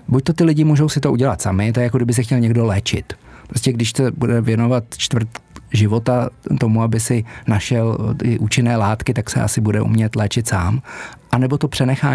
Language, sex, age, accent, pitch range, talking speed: Czech, male, 40-59, native, 110-130 Hz, 205 wpm